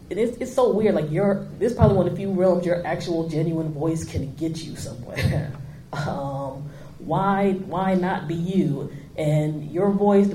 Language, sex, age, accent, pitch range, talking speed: English, female, 30-49, American, 150-180 Hz, 185 wpm